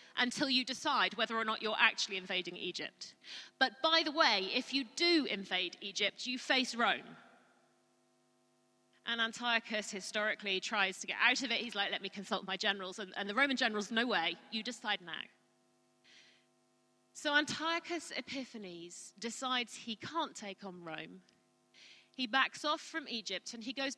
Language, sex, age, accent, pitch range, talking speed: English, female, 30-49, British, 205-275 Hz, 165 wpm